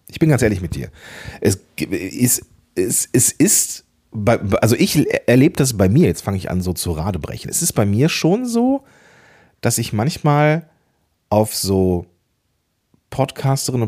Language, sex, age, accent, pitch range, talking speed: German, male, 40-59, German, 90-135 Hz, 145 wpm